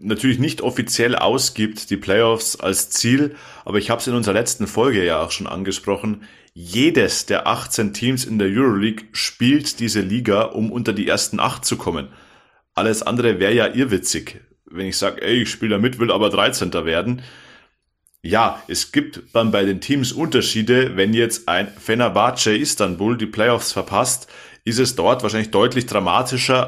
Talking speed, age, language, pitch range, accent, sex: 175 wpm, 30-49, German, 105-130 Hz, German, male